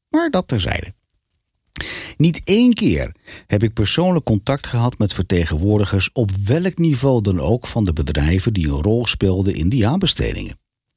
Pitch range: 95-140 Hz